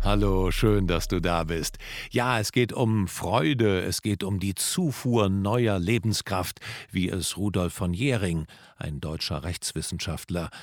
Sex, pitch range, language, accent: male, 95-130 Hz, German, German